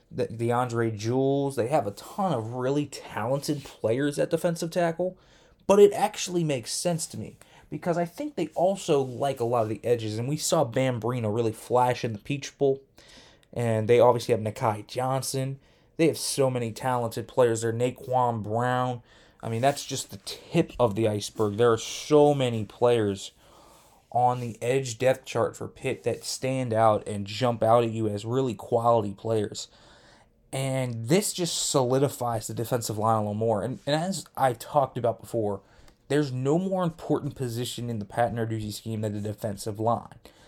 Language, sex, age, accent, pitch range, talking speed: English, male, 20-39, American, 115-145 Hz, 180 wpm